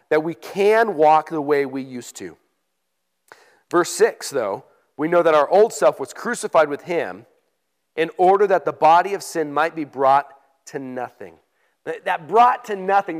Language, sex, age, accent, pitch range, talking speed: English, male, 40-59, American, 145-220 Hz, 175 wpm